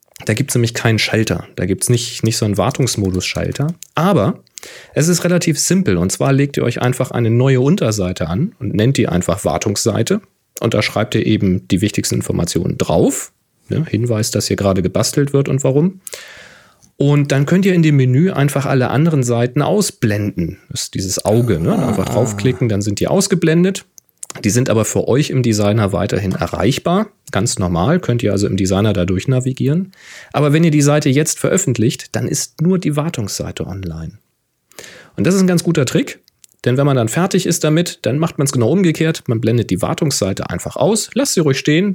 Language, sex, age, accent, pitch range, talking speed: German, male, 40-59, German, 105-150 Hz, 195 wpm